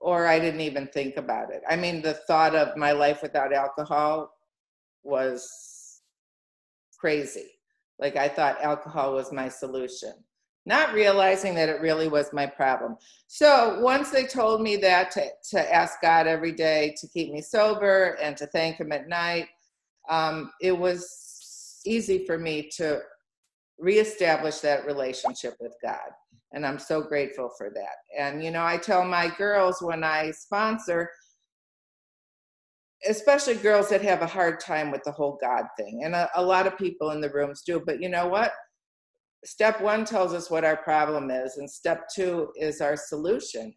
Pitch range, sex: 150-185 Hz, female